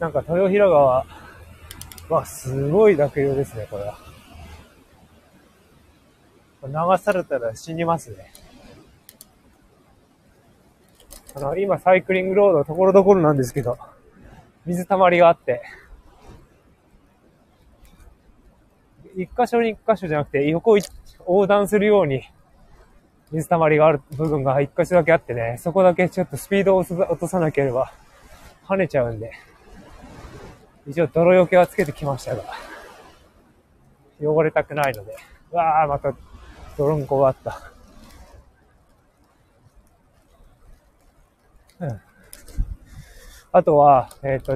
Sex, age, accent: male, 20-39, native